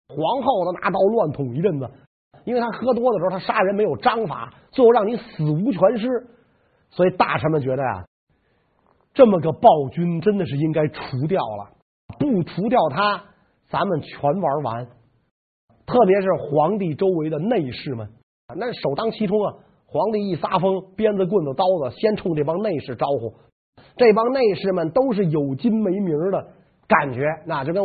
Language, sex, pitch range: Chinese, male, 145-220 Hz